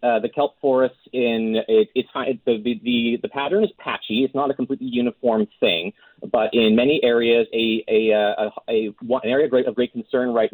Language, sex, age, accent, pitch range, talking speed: English, male, 30-49, American, 100-135 Hz, 190 wpm